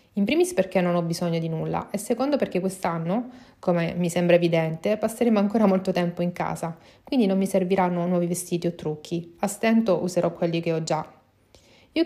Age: 30-49